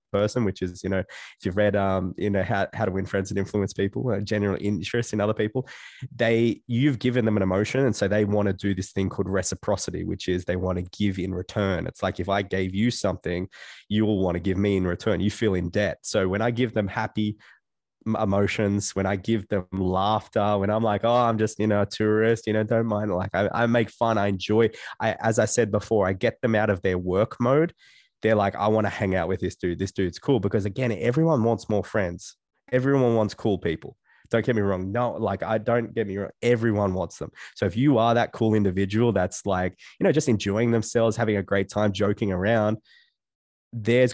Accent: Australian